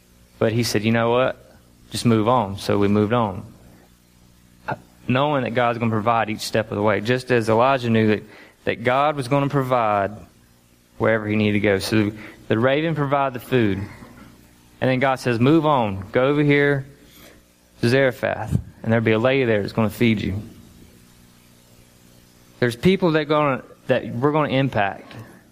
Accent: American